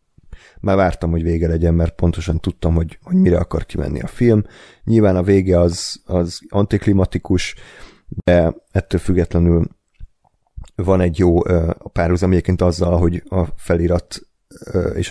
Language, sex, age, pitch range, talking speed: Hungarian, male, 30-49, 85-100 Hz, 135 wpm